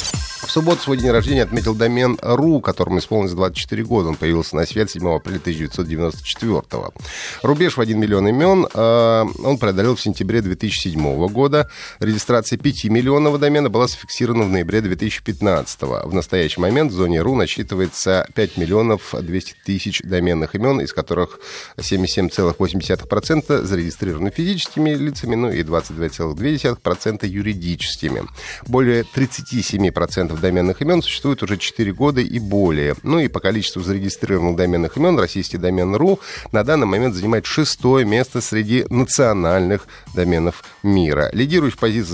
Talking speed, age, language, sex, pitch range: 135 wpm, 30-49, Russian, male, 90-120 Hz